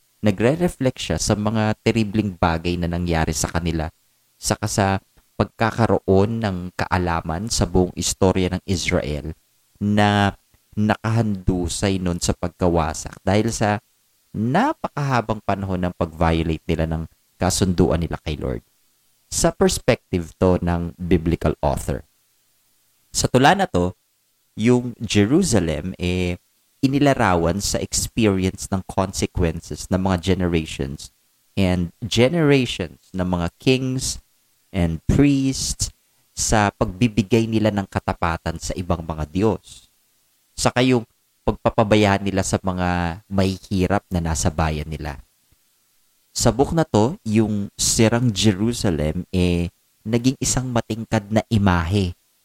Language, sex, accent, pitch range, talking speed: Filipino, male, native, 85-110 Hz, 115 wpm